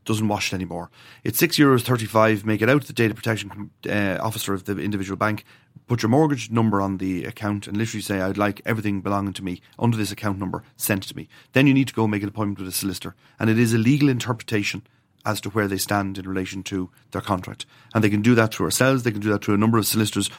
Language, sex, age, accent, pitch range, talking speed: English, male, 30-49, Irish, 100-125 Hz, 250 wpm